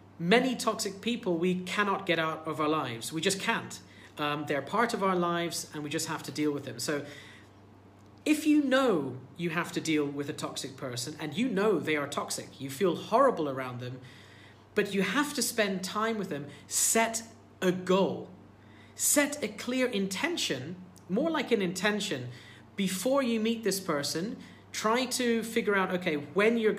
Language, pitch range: English, 145-220 Hz